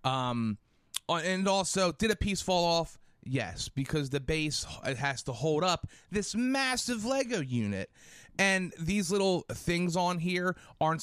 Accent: American